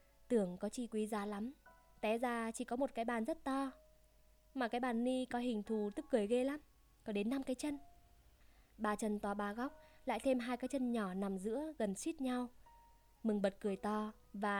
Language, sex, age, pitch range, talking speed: Vietnamese, female, 20-39, 215-255 Hz, 215 wpm